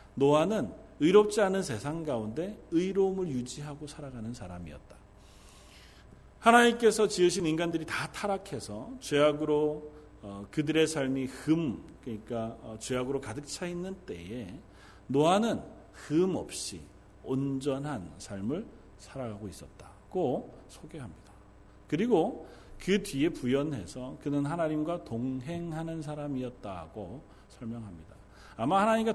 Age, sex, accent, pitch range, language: 40-59, male, native, 105-165 Hz, Korean